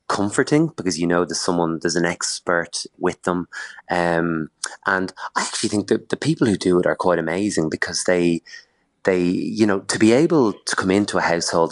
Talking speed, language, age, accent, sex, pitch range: 195 wpm, English, 20-39, Irish, male, 85-100 Hz